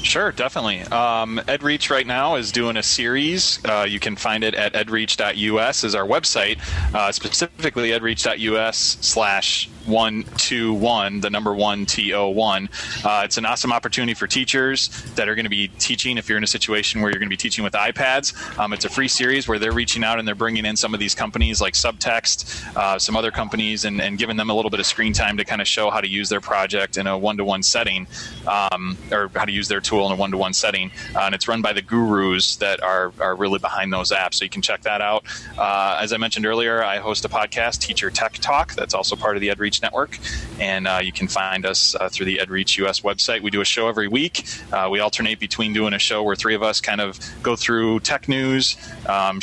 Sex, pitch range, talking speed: male, 100-115 Hz, 225 wpm